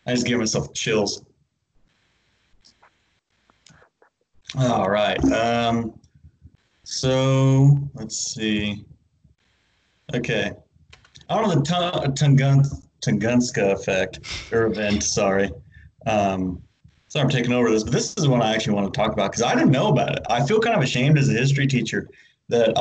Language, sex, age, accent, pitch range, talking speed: English, male, 30-49, American, 110-140 Hz, 140 wpm